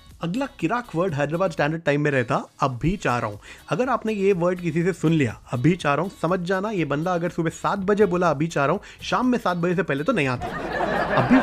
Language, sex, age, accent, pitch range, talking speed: Hindi, male, 30-49, native, 140-195 Hz, 245 wpm